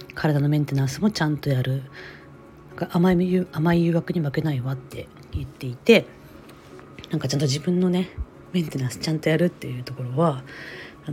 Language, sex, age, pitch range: Japanese, female, 40-59, 130-165 Hz